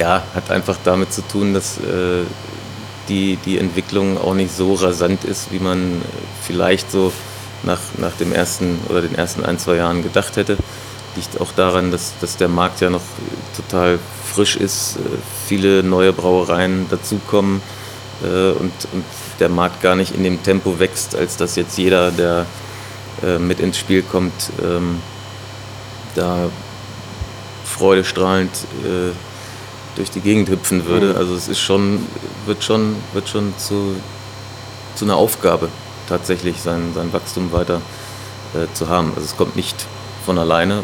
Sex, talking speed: male, 150 wpm